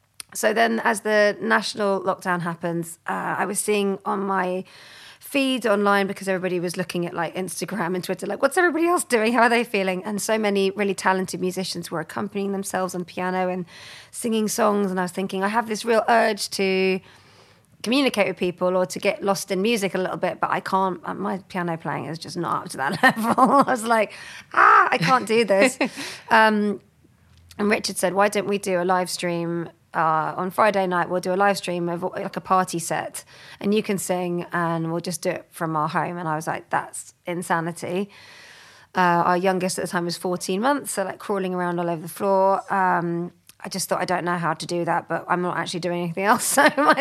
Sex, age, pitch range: female, 30-49, 175-205 Hz